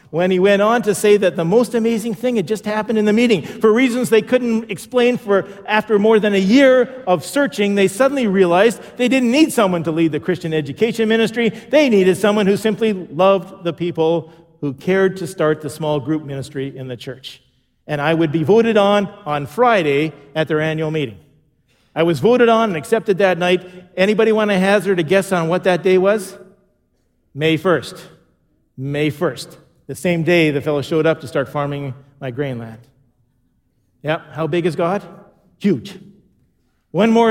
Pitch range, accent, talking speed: 160-210 Hz, American, 190 wpm